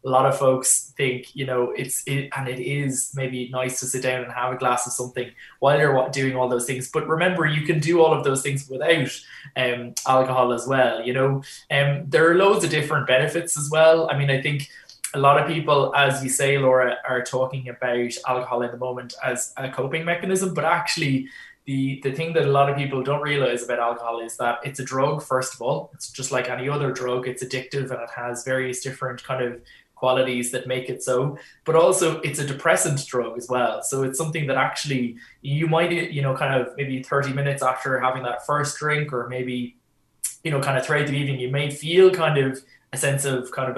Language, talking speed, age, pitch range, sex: English, 225 wpm, 20-39, 125-145 Hz, male